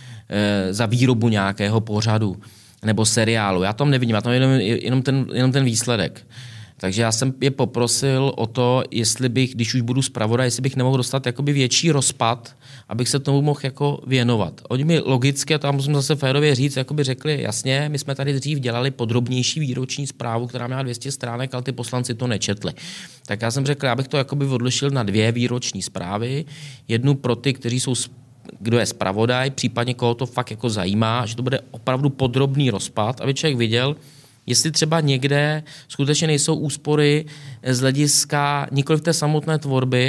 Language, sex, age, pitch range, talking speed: Czech, male, 20-39, 115-140 Hz, 180 wpm